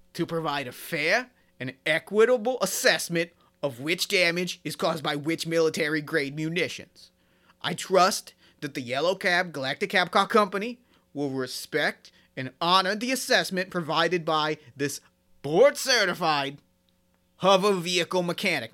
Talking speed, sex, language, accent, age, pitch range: 130 wpm, male, English, American, 30-49, 155-185 Hz